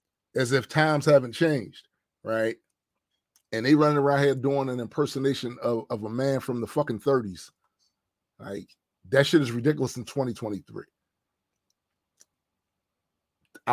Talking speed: 130 wpm